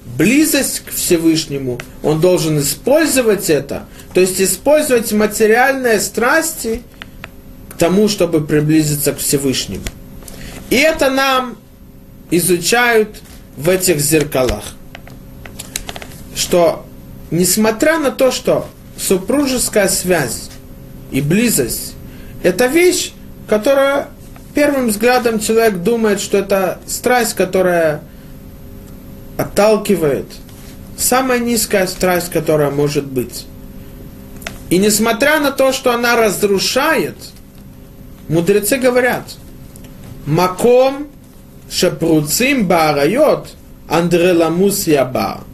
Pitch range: 150-235 Hz